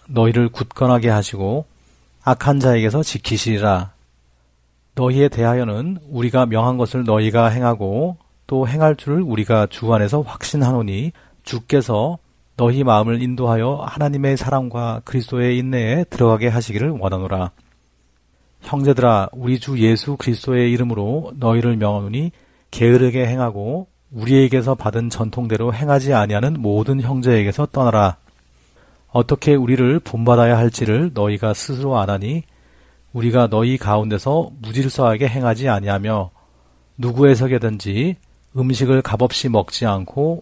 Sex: male